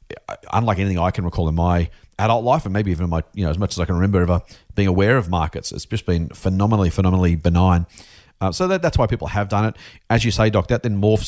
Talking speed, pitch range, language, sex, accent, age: 260 wpm, 85-110 Hz, English, male, Australian, 40-59